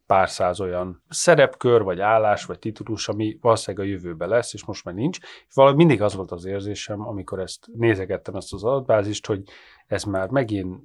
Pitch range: 95-130 Hz